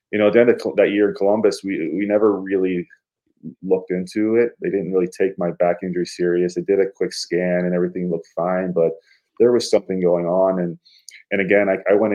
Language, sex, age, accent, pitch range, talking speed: English, male, 20-39, Canadian, 90-110 Hz, 225 wpm